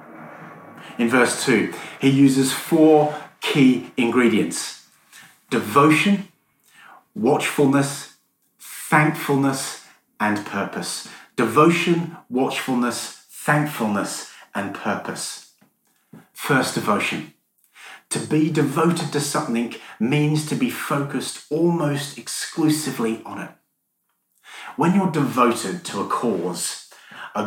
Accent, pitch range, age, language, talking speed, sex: British, 120-155 Hz, 30-49, English, 85 wpm, male